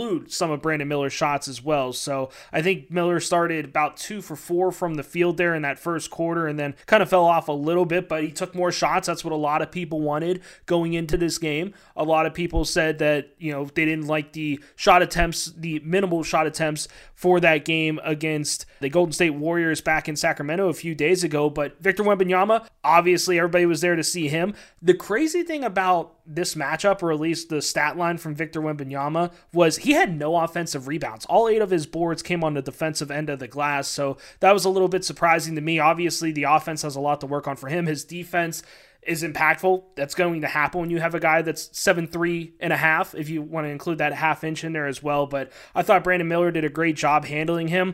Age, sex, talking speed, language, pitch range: 20-39, male, 235 wpm, English, 155-175 Hz